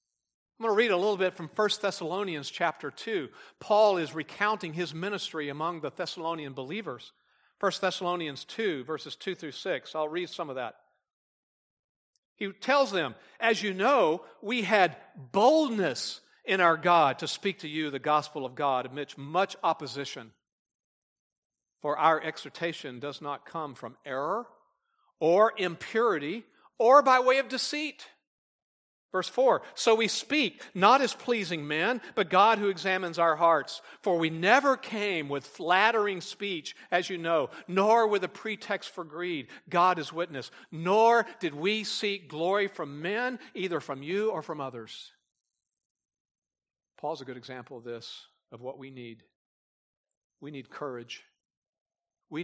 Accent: American